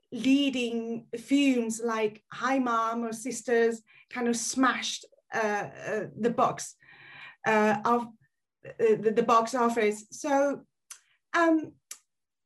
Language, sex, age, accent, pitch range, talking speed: English, female, 30-49, British, 210-255 Hz, 105 wpm